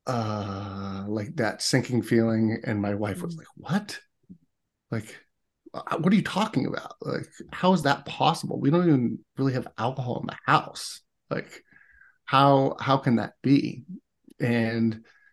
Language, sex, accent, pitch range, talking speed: English, male, American, 110-140 Hz, 150 wpm